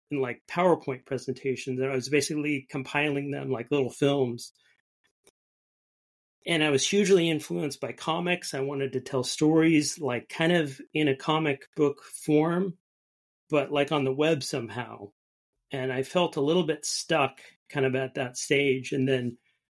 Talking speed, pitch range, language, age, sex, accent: 160 wpm, 130-155 Hz, English, 40-59, male, American